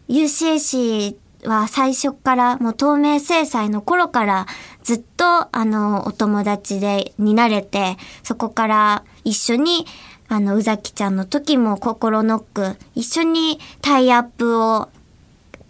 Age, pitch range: 20-39, 205-255 Hz